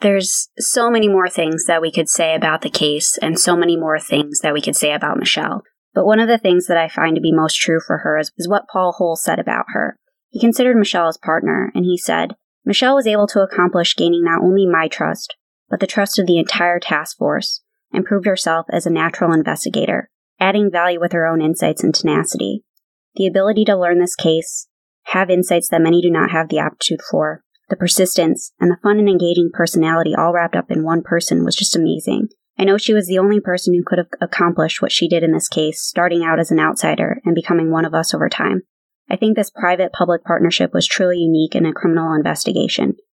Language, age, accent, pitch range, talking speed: English, 20-39, American, 165-195 Hz, 220 wpm